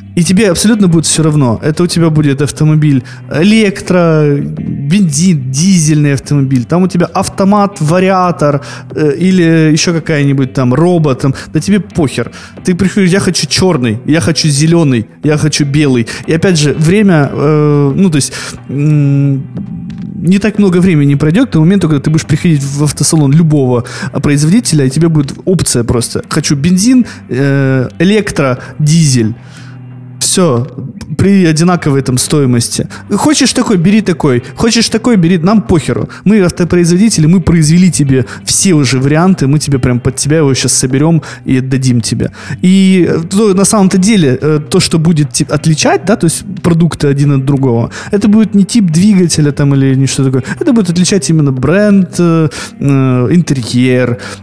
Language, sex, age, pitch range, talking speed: Russian, male, 20-39, 135-185 Hz, 160 wpm